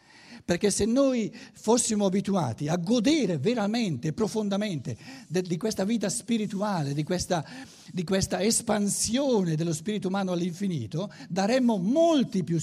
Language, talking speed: Italian, 115 wpm